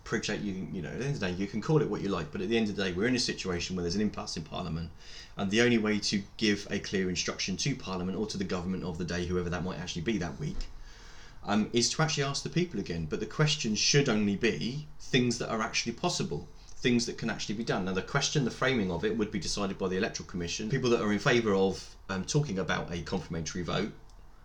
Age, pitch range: 20-39, 90-115 Hz